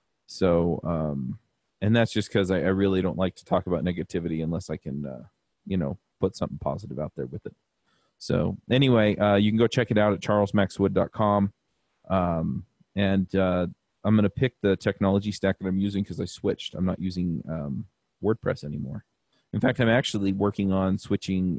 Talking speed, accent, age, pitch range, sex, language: 190 wpm, American, 30-49, 90-100 Hz, male, English